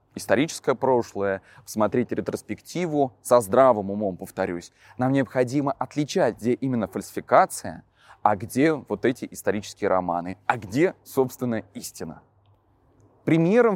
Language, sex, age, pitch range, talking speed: Russian, male, 20-39, 110-170 Hz, 110 wpm